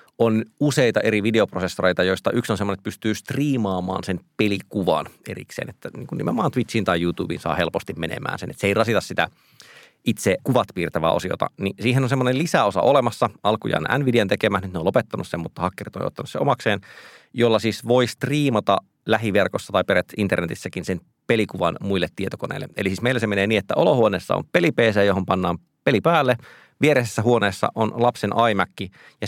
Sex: male